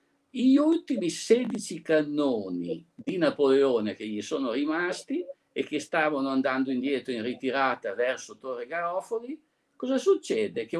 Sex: male